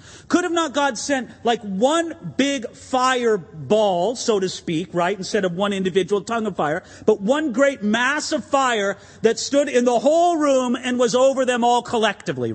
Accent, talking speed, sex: American, 180 wpm, male